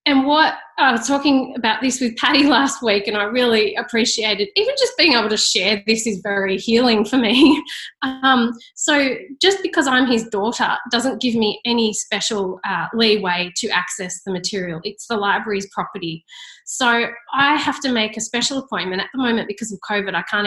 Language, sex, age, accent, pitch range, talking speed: English, female, 30-49, Australian, 195-240 Hz, 195 wpm